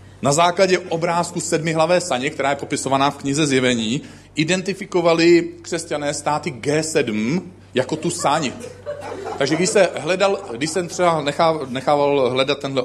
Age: 40-59